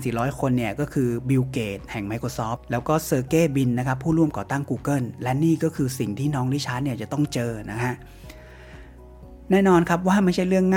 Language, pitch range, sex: Thai, 115-145 Hz, male